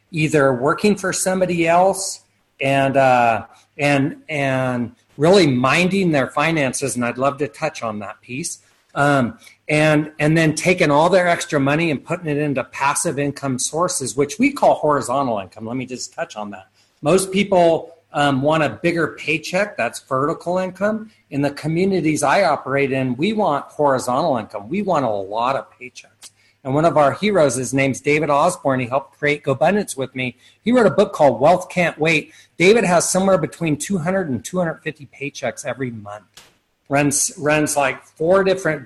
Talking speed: 175 wpm